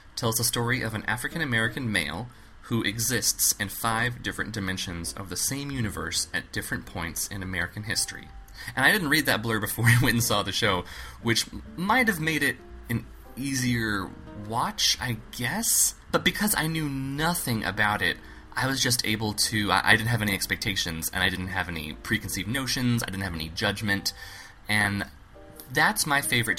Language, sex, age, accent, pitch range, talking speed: English, male, 20-39, American, 90-115 Hz, 180 wpm